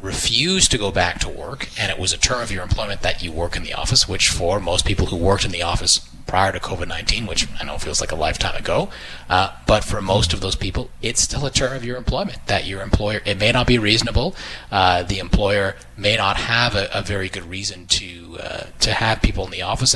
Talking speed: 240 wpm